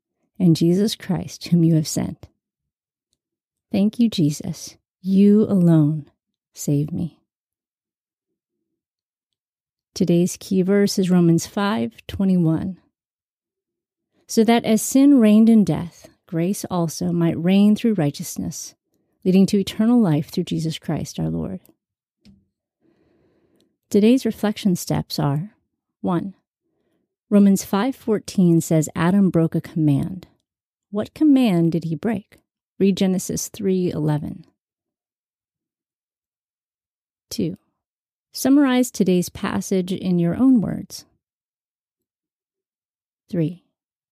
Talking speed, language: 100 wpm, English